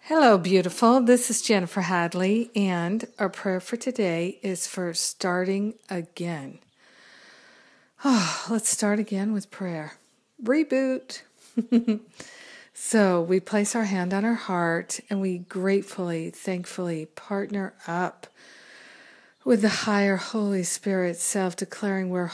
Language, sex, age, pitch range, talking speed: English, female, 50-69, 175-205 Hz, 115 wpm